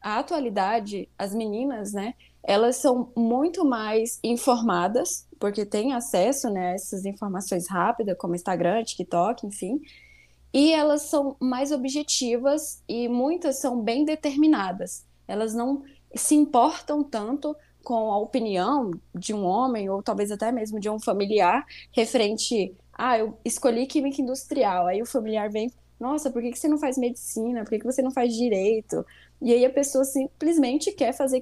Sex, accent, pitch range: female, Brazilian, 215-275 Hz